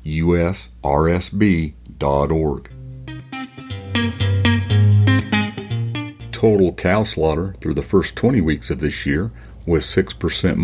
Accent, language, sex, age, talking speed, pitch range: American, English, male, 60-79, 80 wpm, 75-100 Hz